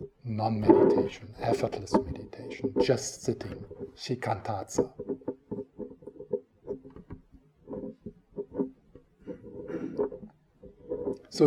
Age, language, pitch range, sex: 50-69, English, 140-195 Hz, male